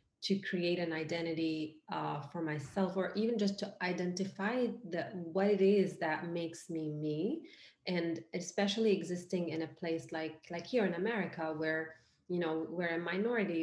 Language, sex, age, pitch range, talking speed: English, female, 30-49, 160-190 Hz, 165 wpm